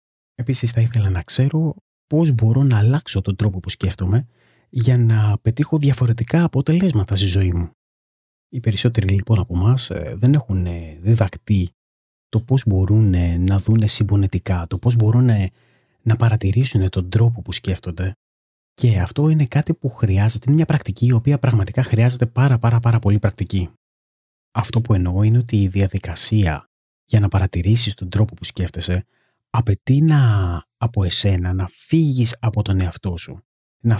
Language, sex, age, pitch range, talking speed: Greek, male, 30-49, 95-120 Hz, 155 wpm